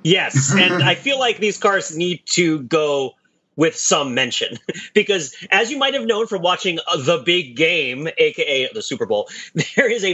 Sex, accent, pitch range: male, American, 160-230 Hz